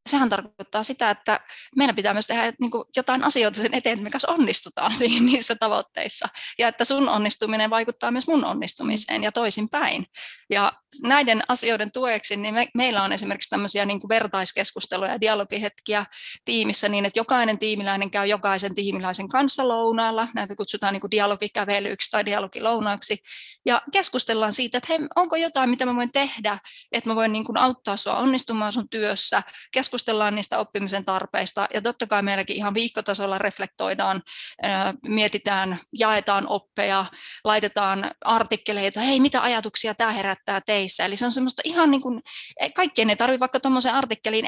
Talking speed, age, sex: 150 wpm, 20-39, female